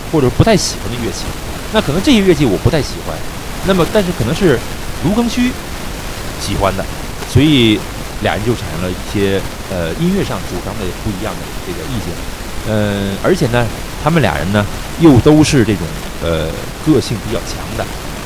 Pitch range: 90-150 Hz